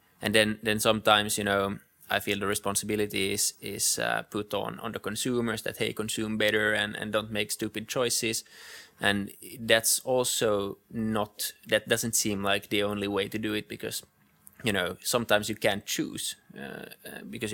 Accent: native